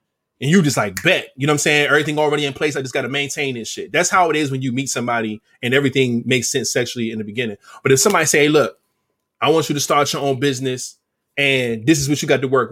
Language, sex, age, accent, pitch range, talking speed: English, male, 20-39, American, 135-180 Hz, 280 wpm